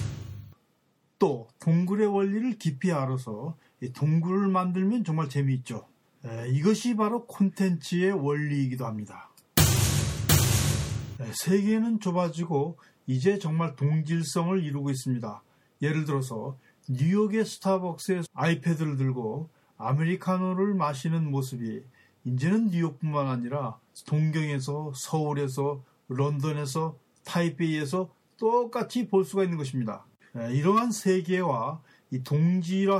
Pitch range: 130-185 Hz